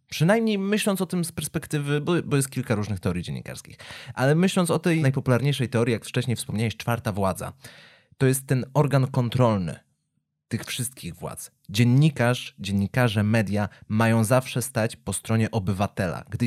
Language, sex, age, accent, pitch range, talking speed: Polish, male, 30-49, native, 115-155 Hz, 155 wpm